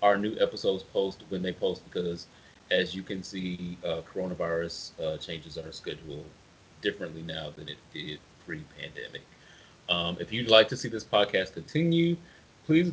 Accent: American